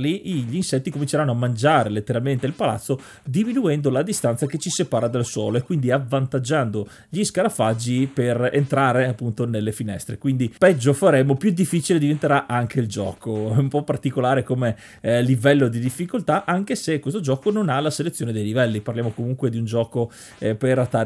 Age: 30-49